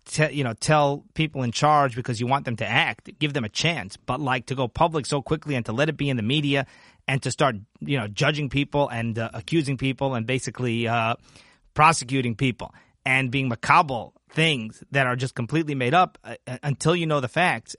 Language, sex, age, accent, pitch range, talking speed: English, male, 30-49, American, 125-155 Hz, 215 wpm